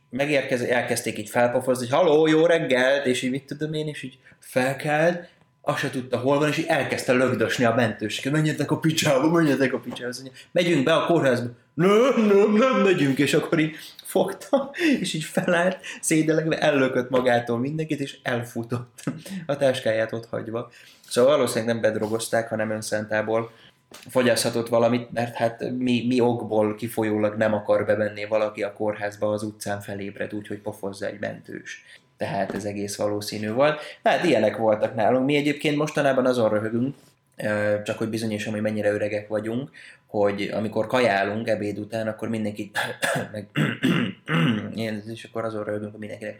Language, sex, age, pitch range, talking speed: Hungarian, male, 20-39, 110-140 Hz, 155 wpm